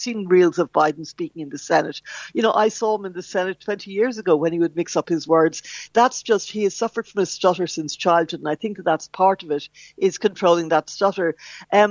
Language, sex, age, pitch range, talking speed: English, female, 60-79, 165-205 Hz, 245 wpm